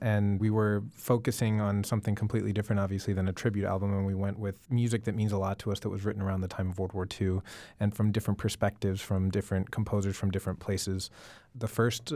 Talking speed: 225 wpm